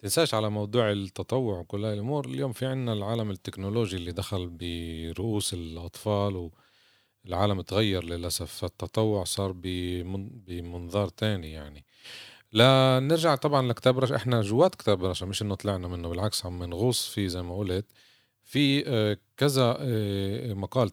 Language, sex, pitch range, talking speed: Arabic, male, 95-115 Hz, 130 wpm